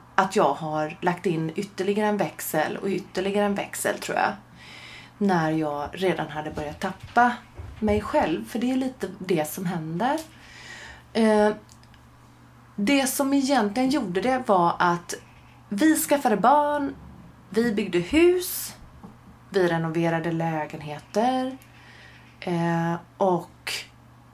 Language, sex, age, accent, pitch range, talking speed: Swedish, female, 30-49, native, 155-220 Hz, 120 wpm